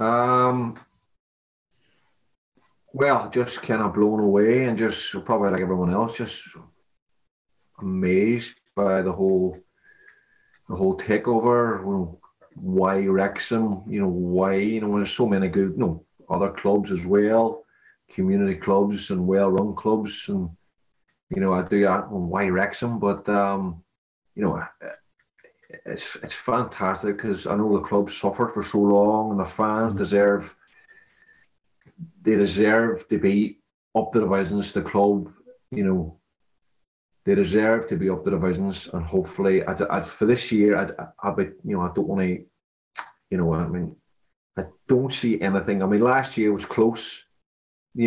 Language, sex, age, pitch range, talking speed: English, male, 30-49, 95-115 Hz, 155 wpm